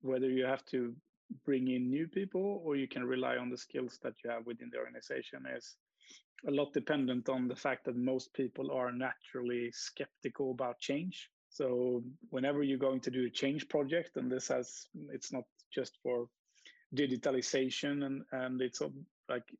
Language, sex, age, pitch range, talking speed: English, male, 30-49, 125-140 Hz, 175 wpm